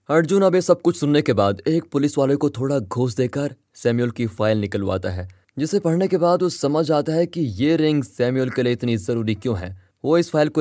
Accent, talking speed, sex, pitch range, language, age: native, 240 wpm, male, 110-155 Hz, Hindi, 20-39